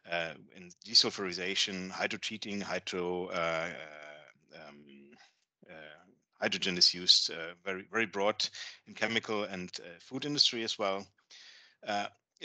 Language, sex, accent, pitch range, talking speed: English, male, German, 95-120 Hz, 120 wpm